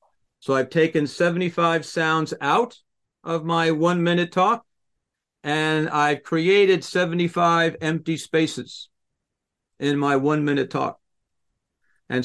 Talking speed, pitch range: 105 wpm, 140-170 Hz